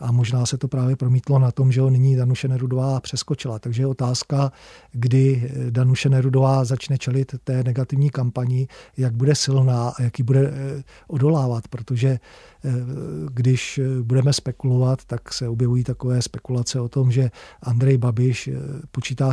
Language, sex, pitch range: Czech, male, 125-135 Hz